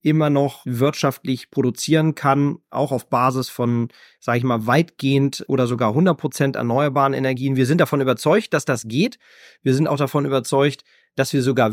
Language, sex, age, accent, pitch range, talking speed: German, male, 30-49, German, 130-155 Hz, 170 wpm